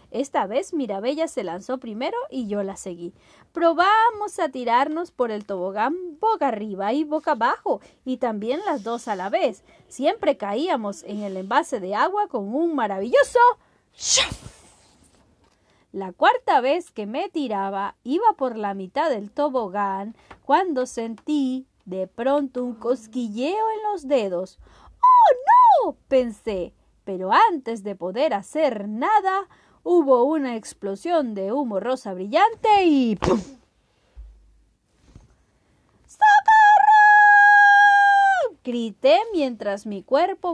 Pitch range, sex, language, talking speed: 205-330 Hz, female, Spanish, 125 wpm